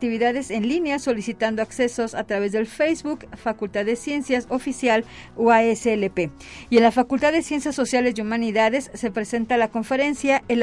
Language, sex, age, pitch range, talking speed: Spanish, female, 50-69, 215-255 Hz, 160 wpm